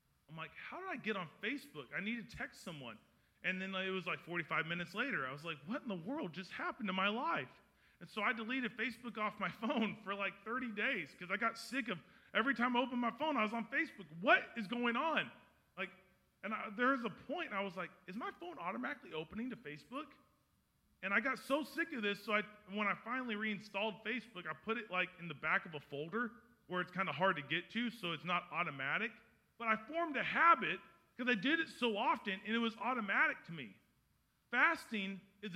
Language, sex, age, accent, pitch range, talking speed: English, male, 30-49, American, 185-245 Hz, 230 wpm